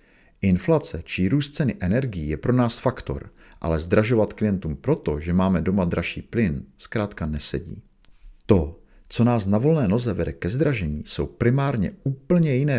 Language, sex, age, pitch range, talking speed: Czech, male, 50-69, 85-115 Hz, 155 wpm